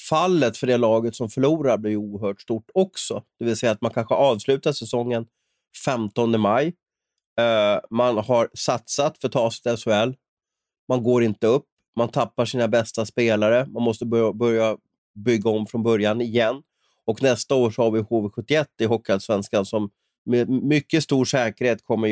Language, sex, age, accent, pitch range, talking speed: Swedish, male, 30-49, native, 110-120 Hz, 165 wpm